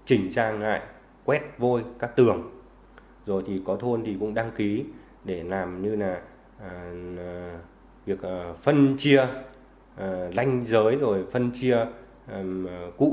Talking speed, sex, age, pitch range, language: 130 wpm, male, 20-39, 100-125 Hz, Vietnamese